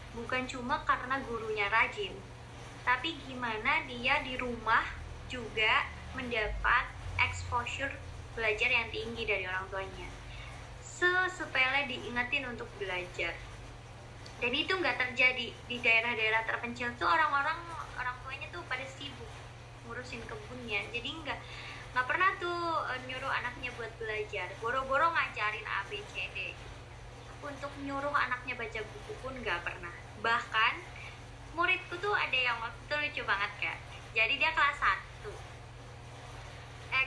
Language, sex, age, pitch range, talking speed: Indonesian, male, 20-39, 205-315 Hz, 120 wpm